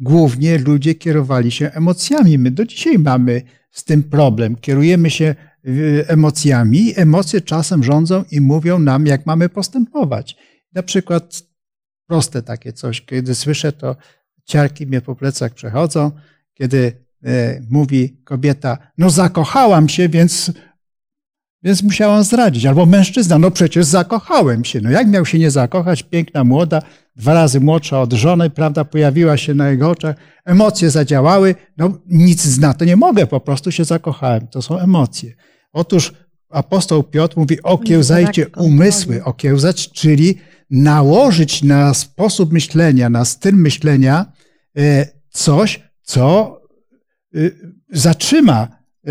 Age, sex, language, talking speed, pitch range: 50-69, male, Polish, 130 wpm, 140-175 Hz